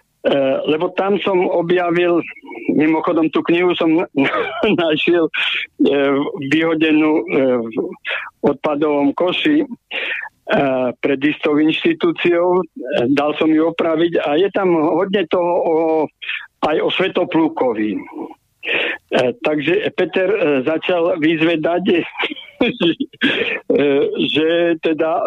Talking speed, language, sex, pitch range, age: 80 wpm, Slovak, male, 150-185 Hz, 60-79